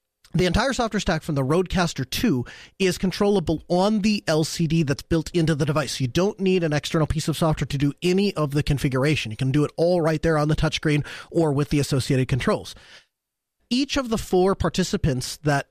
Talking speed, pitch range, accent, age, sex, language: 205 wpm, 155-200 Hz, American, 30-49, male, English